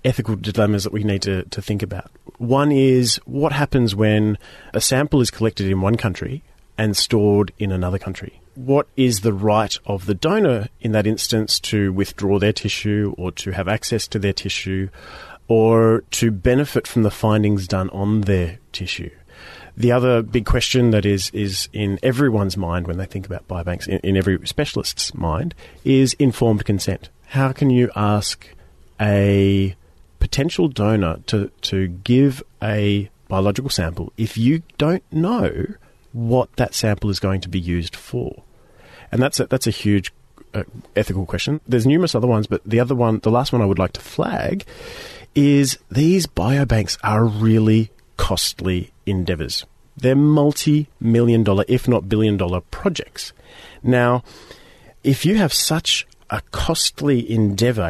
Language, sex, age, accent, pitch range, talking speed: English, male, 30-49, Australian, 95-125 Hz, 160 wpm